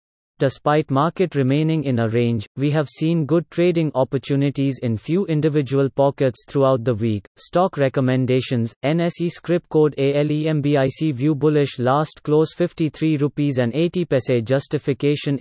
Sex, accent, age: male, Indian, 30-49